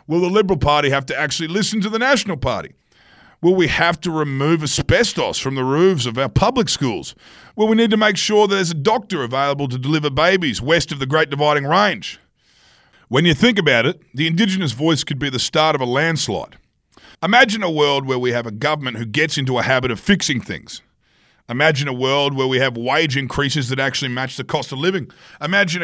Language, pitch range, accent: English, 135-180 Hz, Australian